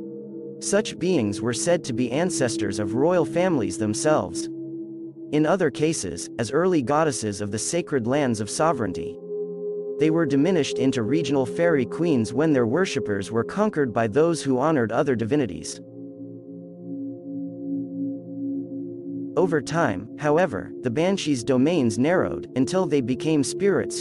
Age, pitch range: 40-59, 115-175 Hz